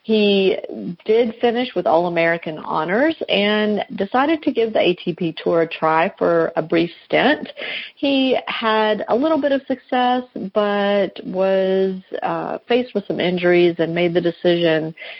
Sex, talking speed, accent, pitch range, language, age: female, 150 wpm, American, 170-220 Hz, English, 40-59